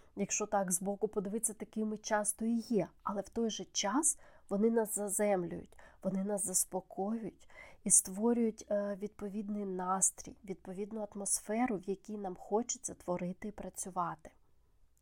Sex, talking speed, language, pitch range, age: female, 130 wpm, Ukrainian, 185-220 Hz, 20-39